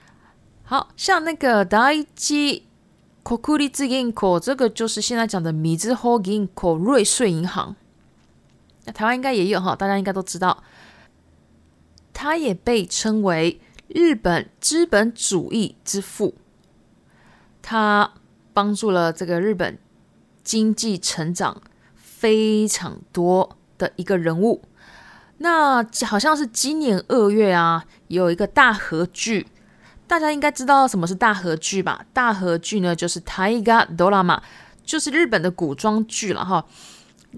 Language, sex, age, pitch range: Japanese, female, 20-39, 185-245 Hz